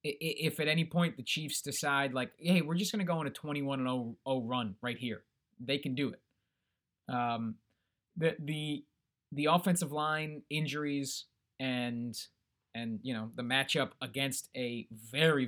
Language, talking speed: English, 160 wpm